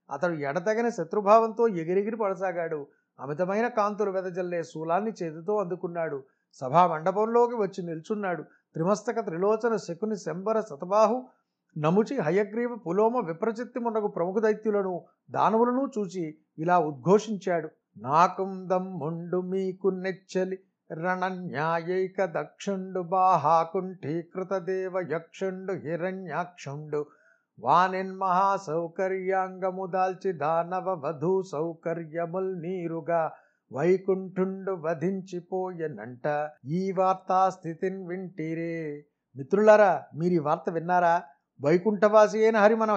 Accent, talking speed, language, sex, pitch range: native, 70 wpm, Telugu, male, 170-215 Hz